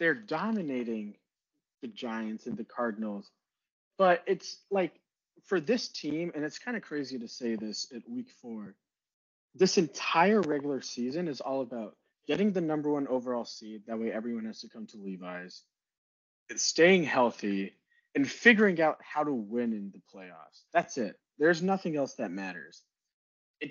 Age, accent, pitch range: 20-39, American, 115-160 Hz